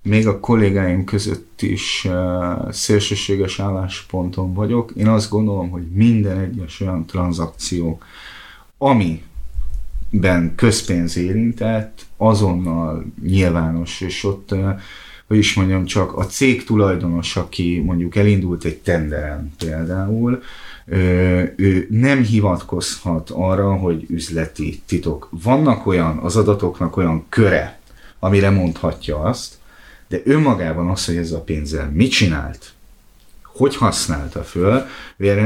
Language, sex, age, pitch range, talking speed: Hungarian, male, 30-49, 85-105 Hz, 110 wpm